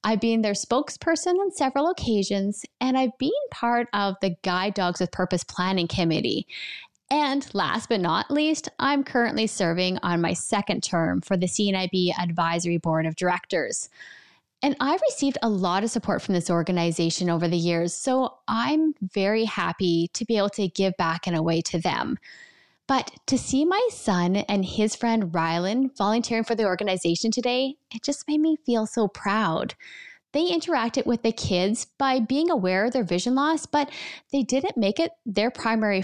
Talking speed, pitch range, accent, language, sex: 175 wpm, 185-275 Hz, American, English, female